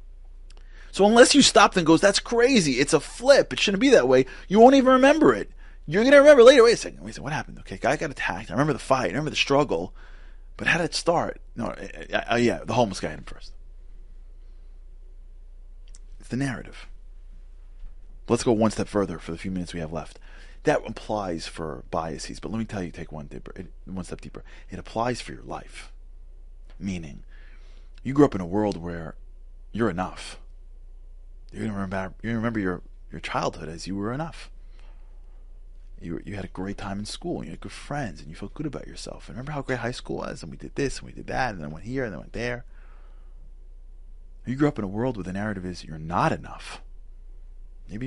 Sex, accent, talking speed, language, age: male, American, 220 wpm, English, 30-49